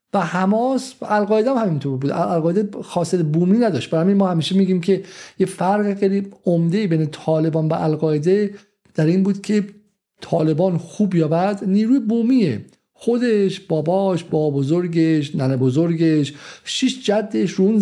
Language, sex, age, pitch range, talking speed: Persian, male, 50-69, 160-195 Hz, 150 wpm